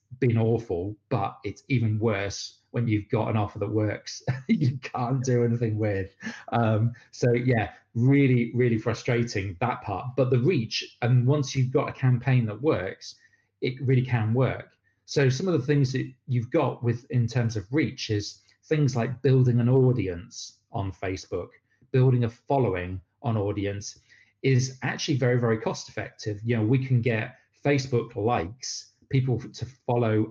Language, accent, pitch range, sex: English, British, 105-130 Hz, male